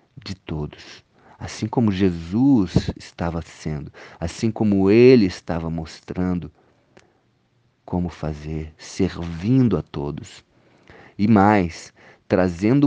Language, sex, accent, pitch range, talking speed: Portuguese, male, Brazilian, 90-120 Hz, 95 wpm